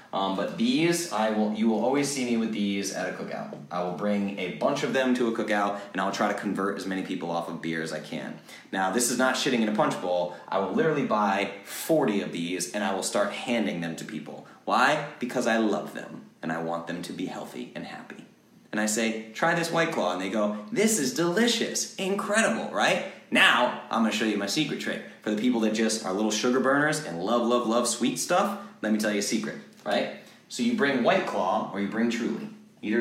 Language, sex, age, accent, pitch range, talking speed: English, male, 30-49, American, 105-155 Hz, 240 wpm